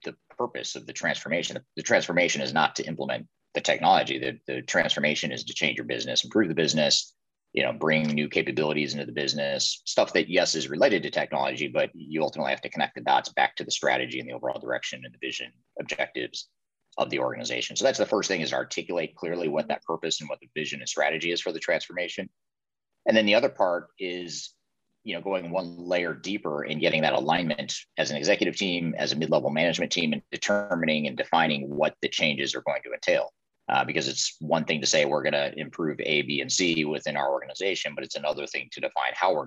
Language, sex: English, male